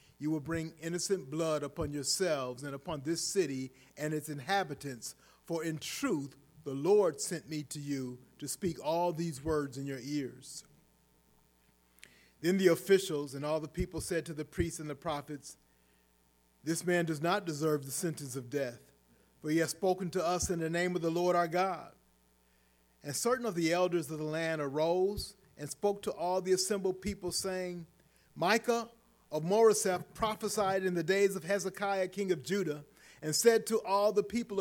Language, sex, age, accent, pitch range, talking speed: English, male, 40-59, American, 150-195 Hz, 180 wpm